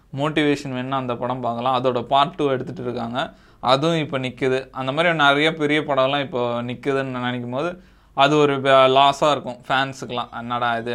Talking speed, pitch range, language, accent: 155 wpm, 125-150 Hz, Tamil, native